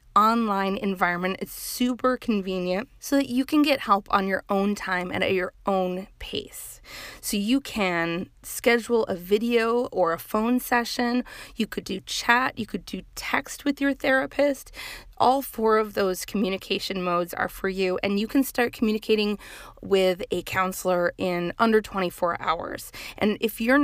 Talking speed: 165 wpm